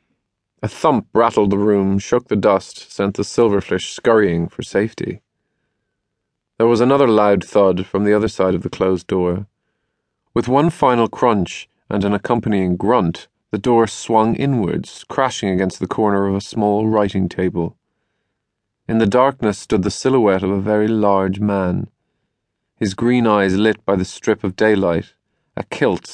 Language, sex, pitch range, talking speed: English, male, 95-110 Hz, 160 wpm